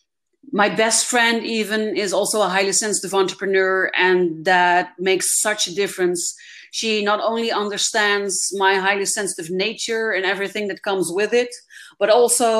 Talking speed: 150 wpm